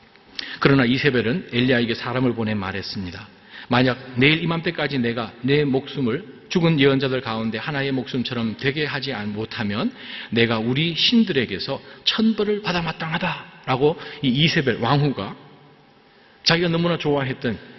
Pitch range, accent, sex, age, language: 115-165 Hz, native, male, 40-59, Korean